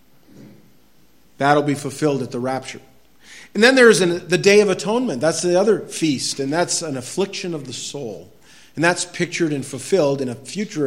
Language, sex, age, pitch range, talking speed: English, male, 40-59, 130-175 Hz, 180 wpm